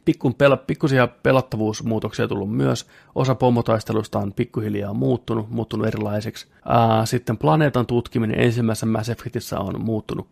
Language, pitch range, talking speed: Finnish, 110-125 Hz, 110 wpm